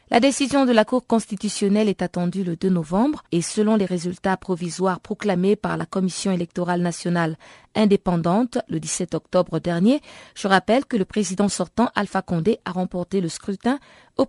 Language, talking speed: French, 170 wpm